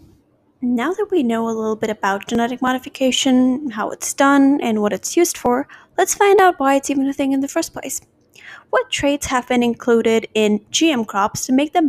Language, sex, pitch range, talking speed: English, female, 225-290 Hz, 205 wpm